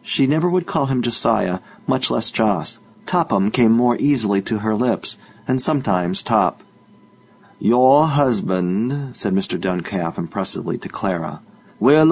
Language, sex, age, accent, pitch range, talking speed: English, male, 40-59, American, 100-140 Hz, 140 wpm